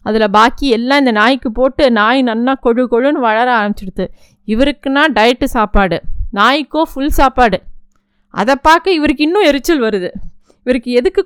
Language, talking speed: Tamil, 140 wpm